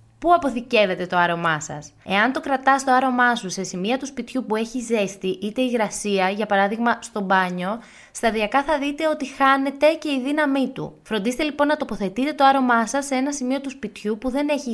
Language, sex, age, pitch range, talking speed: Greek, female, 20-39, 195-260 Hz, 195 wpm